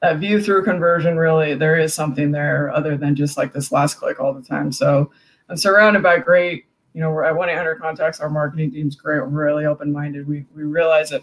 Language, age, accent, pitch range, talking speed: English, 20-39, American, 150-180 Hz, 215 wpm